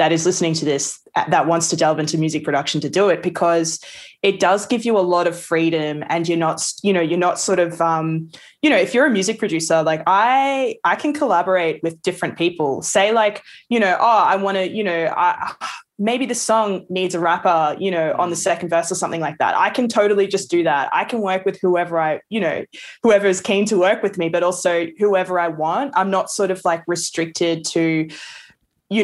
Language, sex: English, female